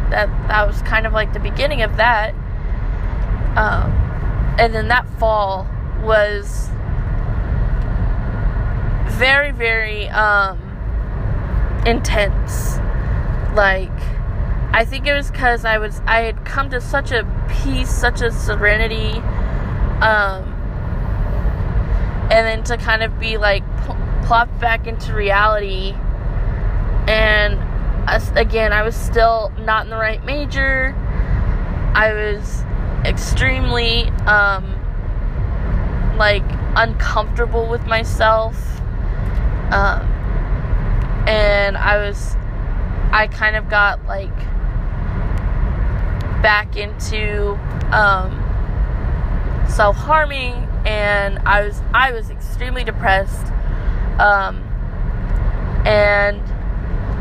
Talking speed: 95 wpm